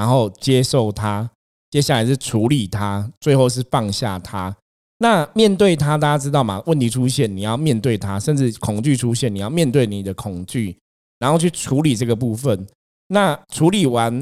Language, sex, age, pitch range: Chinese, male, 20-39, 105-150 Hz